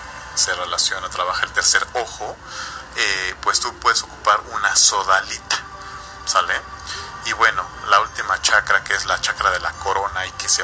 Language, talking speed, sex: Spanish, 165 wpm, male